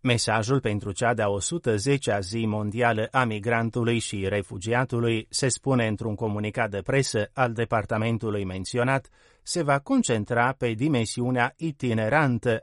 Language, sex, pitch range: Romanian, male, 110-135 Hz